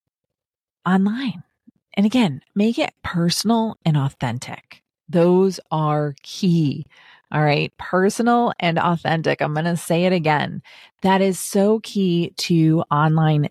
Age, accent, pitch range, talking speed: 30-49, American, 160-215 Hz, 125 wpm